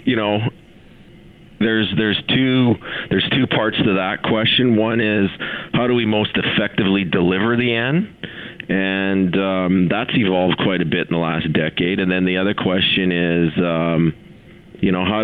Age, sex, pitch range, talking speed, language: 40-59, male, 90-105 Hz, 165 wpm, English